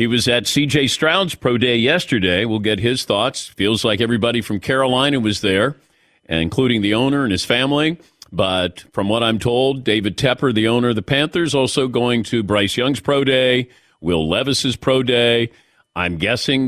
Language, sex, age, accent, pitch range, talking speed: English, male, 50-69, American, 105-140 Hz, 180 wpm